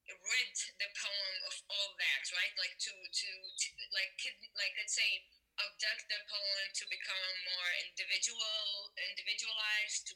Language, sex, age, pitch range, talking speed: English, female, 10-29, 190-245 Hz, 140 wpm